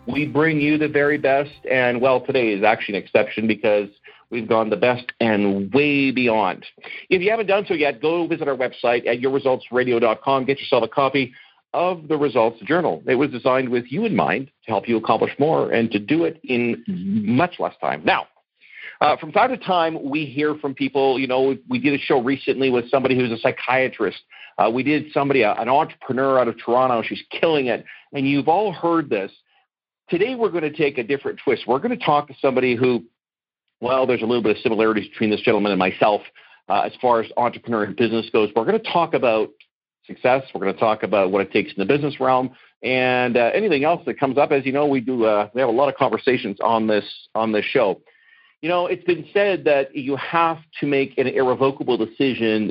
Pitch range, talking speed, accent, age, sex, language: 115-145 Hz, 215 wpm, American, 50-69, male, English